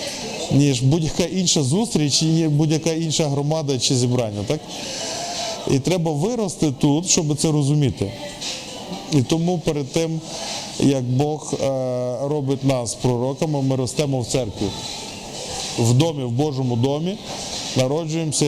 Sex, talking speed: male, 115 wpm